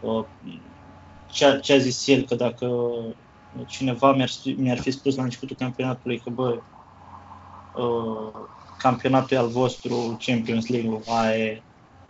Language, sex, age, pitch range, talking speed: Romanian, male, 20-39, 120-140 Hz, 130 wpm